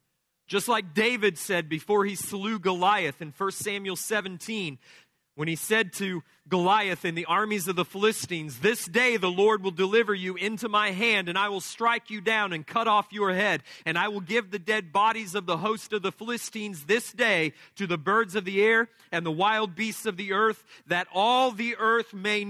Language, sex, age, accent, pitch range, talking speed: English, male, 40-59, American, 165-215 Hz, 205 wpm